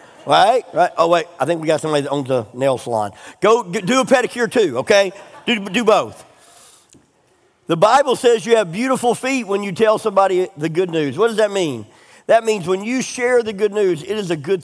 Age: 50-69